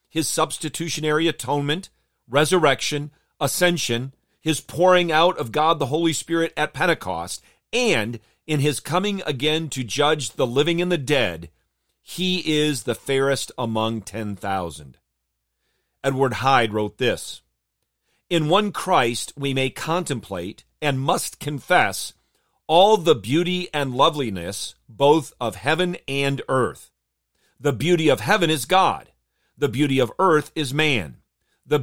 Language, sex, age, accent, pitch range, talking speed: English, male, 40-59, American, 110-160 Hz, 130 wpm